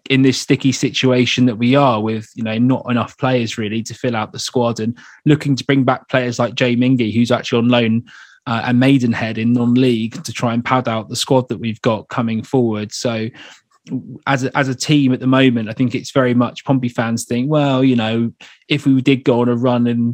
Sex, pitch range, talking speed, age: male, 115-130 Hz, 225 wpm, 20-39